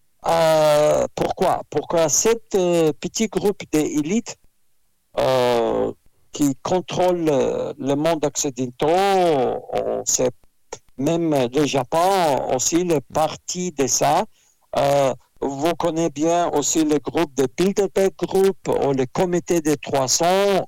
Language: French